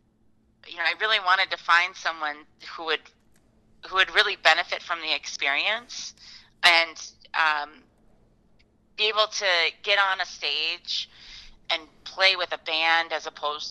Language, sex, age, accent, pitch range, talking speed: English, female, 30-49, American, 145-180 Hz, 145 wpm